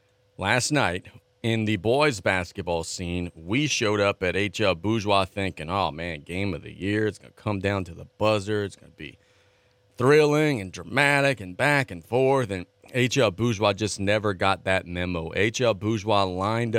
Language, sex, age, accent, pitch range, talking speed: English, male, 30-49, American, 100-120 Hz, 180 wpm